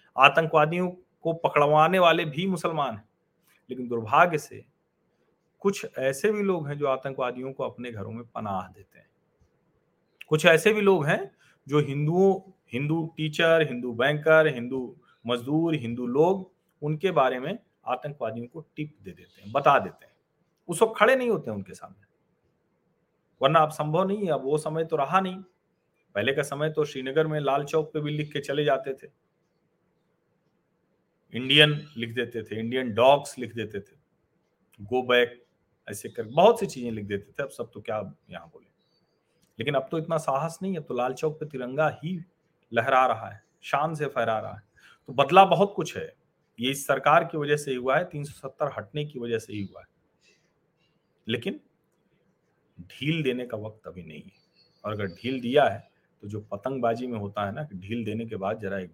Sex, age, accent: male, 40-59, native